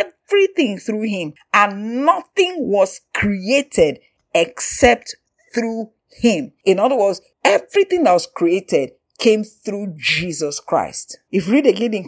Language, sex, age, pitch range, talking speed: English, female, 50-69, 170-265 Hz, 130 wpm